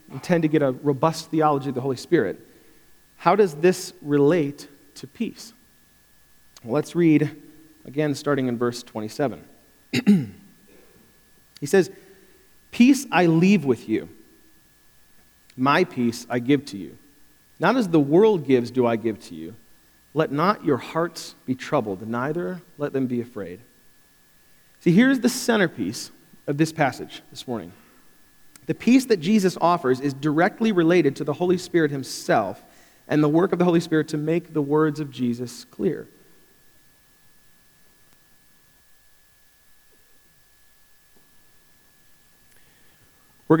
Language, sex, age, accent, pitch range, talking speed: English, male, 40-59, American, 125-170 Hz, 130 wpm